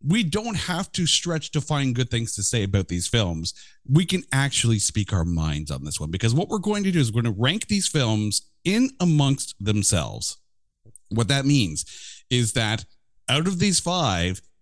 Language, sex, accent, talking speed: English, male, American, 195 wpm